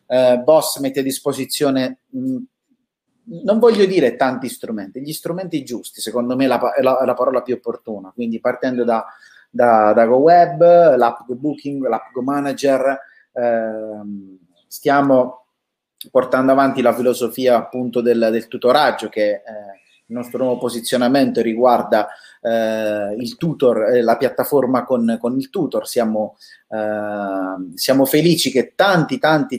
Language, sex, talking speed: Italian, male, 140 wpm